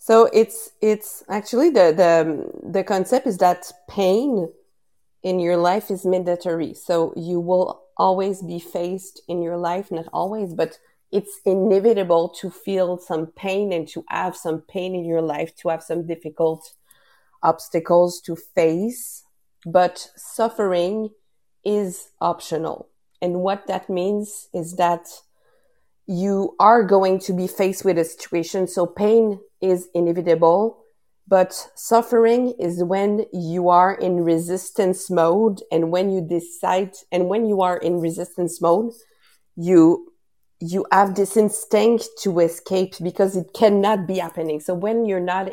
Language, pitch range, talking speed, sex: English, 170-205 Hz, 140 wpm, female